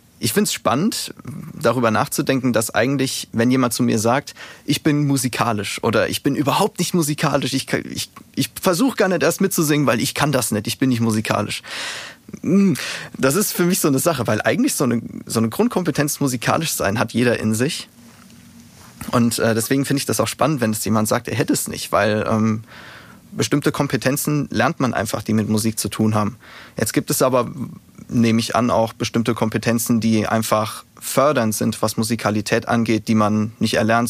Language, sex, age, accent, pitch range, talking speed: German, male, 30-49, German, 110-140 Hz, 185 wpm